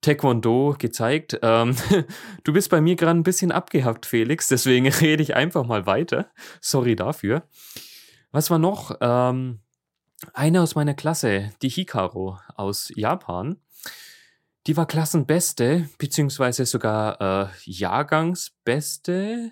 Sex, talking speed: male, 120 wpm